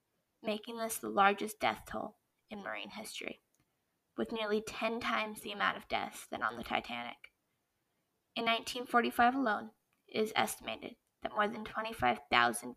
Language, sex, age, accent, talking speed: English, female, 10-29, American, 145 wpm